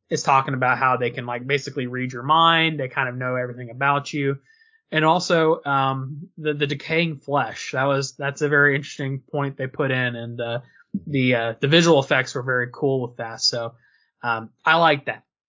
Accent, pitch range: American, 130-180 Hz